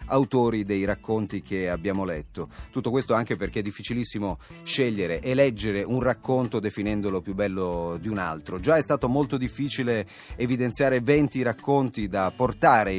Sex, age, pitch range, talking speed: male, 30-49, 105-140 Hz, 150 wpm